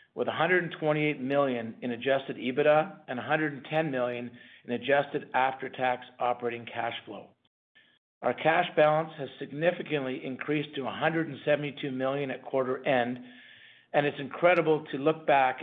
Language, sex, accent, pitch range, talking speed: English, male, American, 125-155 Hz, 125 wpm